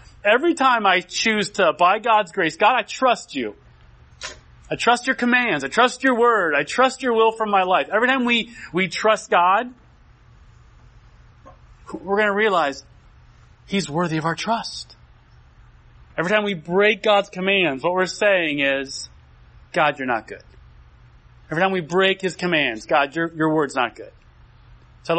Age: 30-49